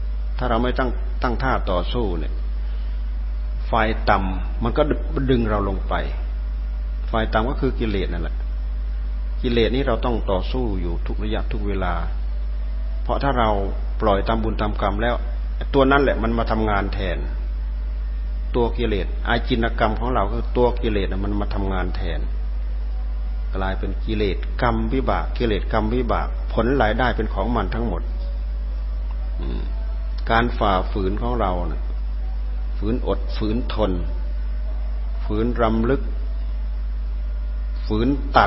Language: Thai